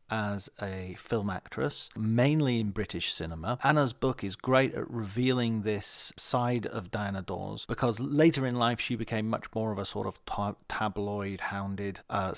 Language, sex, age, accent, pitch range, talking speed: English, male, 40-59, British, 95-120 Hz, 165 wpm